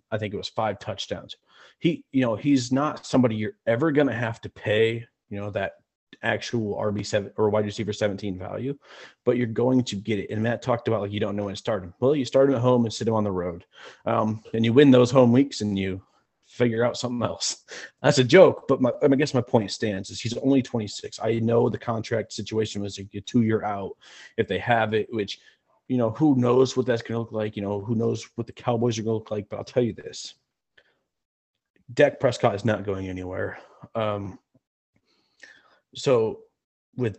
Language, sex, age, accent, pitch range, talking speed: English, male, 30-49, American, 100-125 Hz, 220 wpm